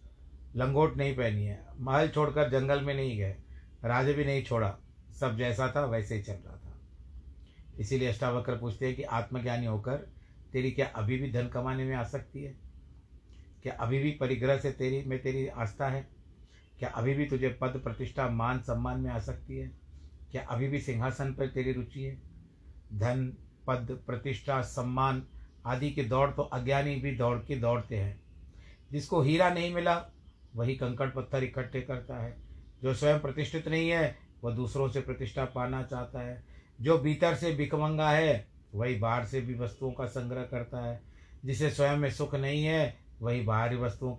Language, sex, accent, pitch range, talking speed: Hindi, male, native, 110-135 Hz, 175 wpm